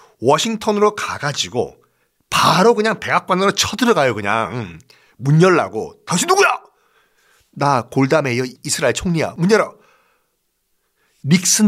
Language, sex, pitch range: Korean, male, 120-170 Hz